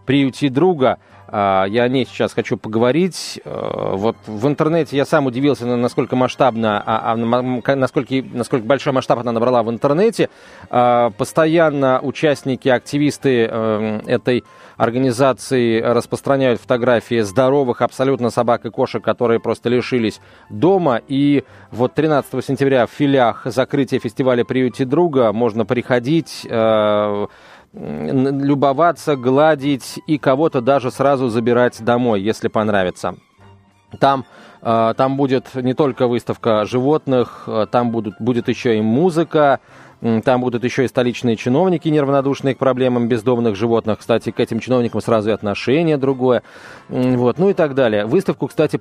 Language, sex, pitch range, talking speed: Russian, male, 115-140 Hz, 125 wpm